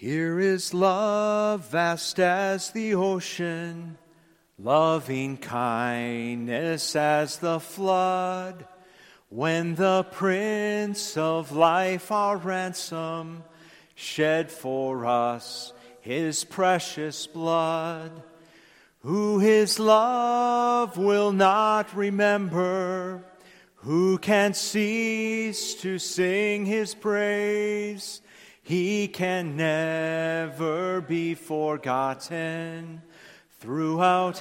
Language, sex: English, male